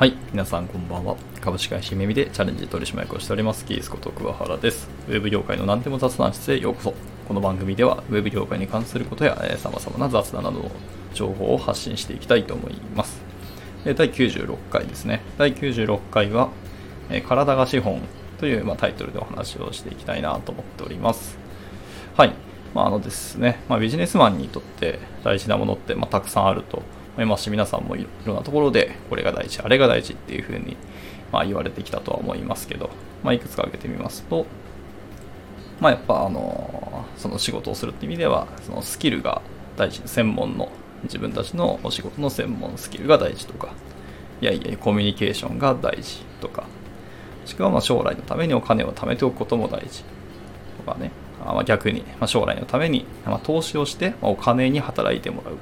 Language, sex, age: Japanese, male, 20-39